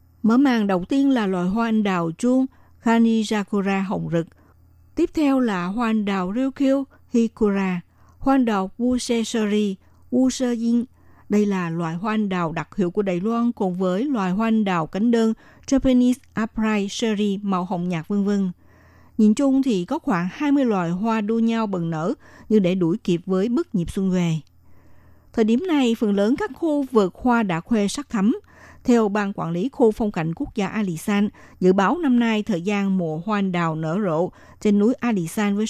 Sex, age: female, 60-79